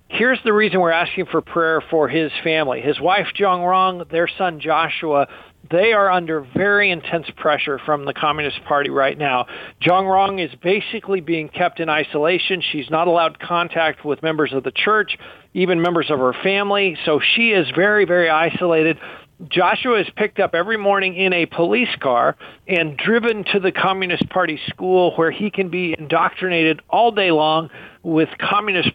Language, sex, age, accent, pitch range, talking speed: English, male, 50-69, American, 160-195 Hz, 170 wpm